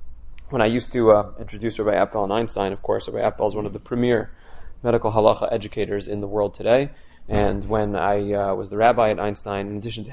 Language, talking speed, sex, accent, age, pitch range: English, 225 wpm, male, American, 20-39, 100-120 Hz